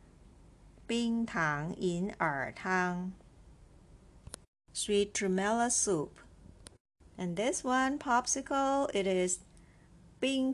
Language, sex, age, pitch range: Chinese, female, 50-69, 175-240 Hz